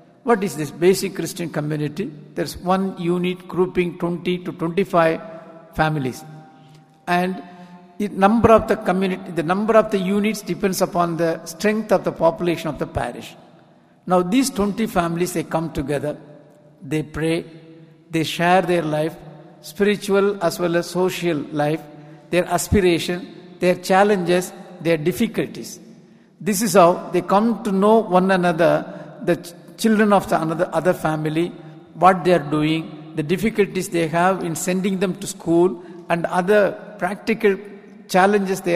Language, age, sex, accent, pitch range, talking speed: English, 60-79, male, Indian, 160-190 Hz, 145 wpm